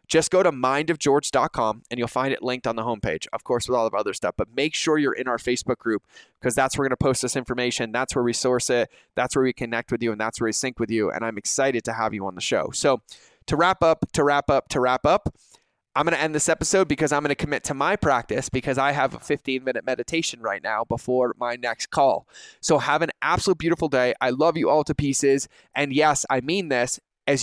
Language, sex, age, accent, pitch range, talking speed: English, male, 20-39, American, 120-150 Hz, 255 wpm